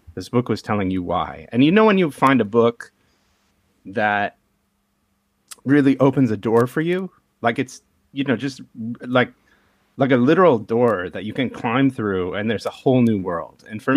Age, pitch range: 30-49, 105-130 Hz